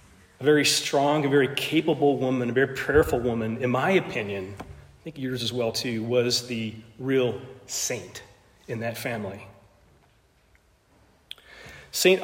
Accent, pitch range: American, 115-150 Hz